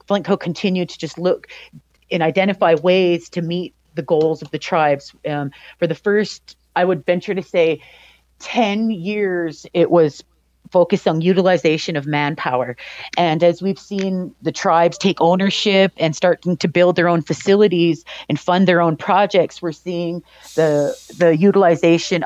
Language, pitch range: English, 160-185 Hz